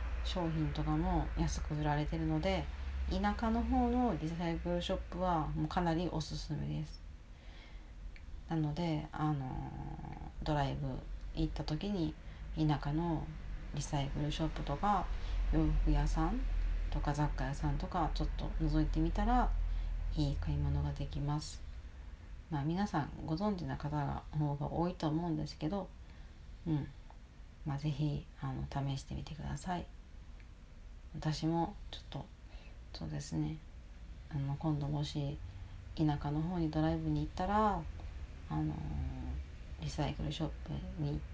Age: 40-59